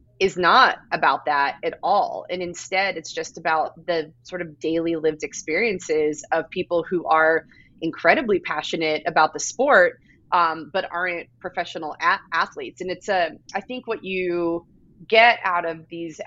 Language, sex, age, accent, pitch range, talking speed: English, female, 30-49, American, 155-190 Hz, 155 wpm